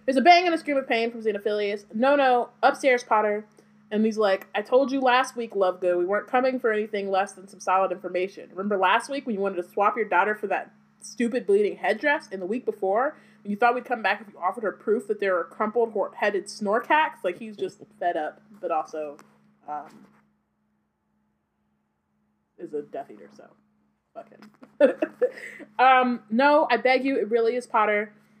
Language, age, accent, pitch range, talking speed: English, 30-49, American, 185-235 Hz, 195 wpm